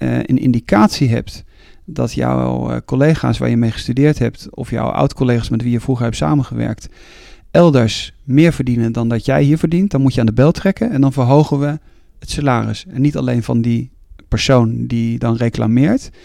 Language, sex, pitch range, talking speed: Dutch, male, 115-145 Hz, 185 wpm